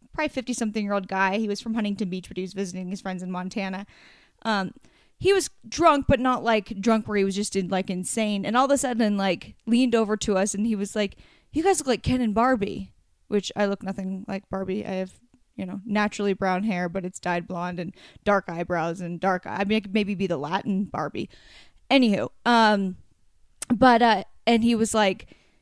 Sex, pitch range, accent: female, 195-245 Hz, American